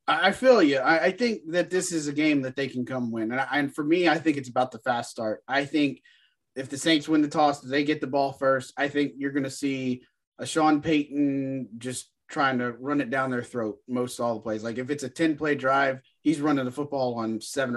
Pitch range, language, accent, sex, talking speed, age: 120-140 Hz, English, American, male, 255 wpm, 30-49